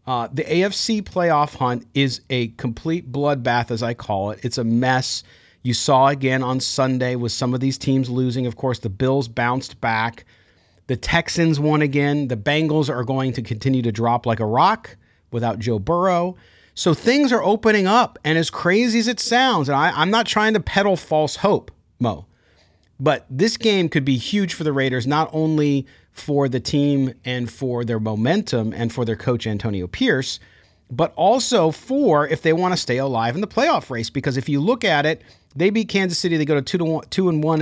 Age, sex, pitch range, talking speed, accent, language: 40-59, male, 120-170 Hz, 200 wpm, American, English